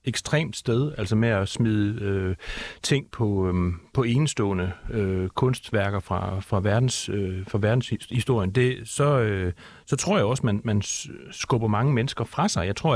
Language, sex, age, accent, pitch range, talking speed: Danish, male, 40-59, native, 105-130 Hz, 170 wpm